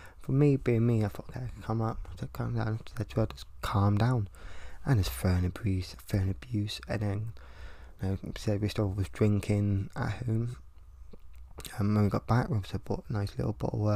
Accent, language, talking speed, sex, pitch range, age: British, English, 230 wpm, male, 85-115 Hz, 20-39